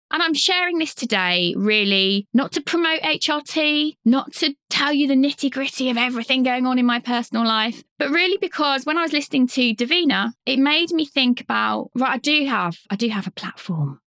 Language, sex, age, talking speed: English, female, 20-39, 205 wpm